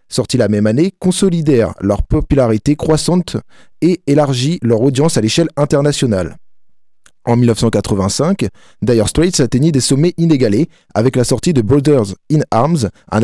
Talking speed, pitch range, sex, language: 140 wpm, 110-145 Hz, male, French